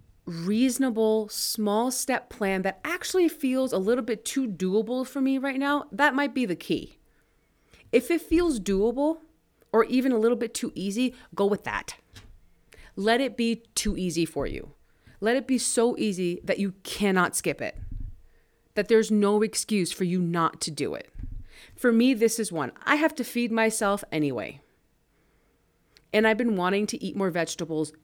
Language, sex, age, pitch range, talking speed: English, female, 30-49, 170-230 Hz, 175 wpm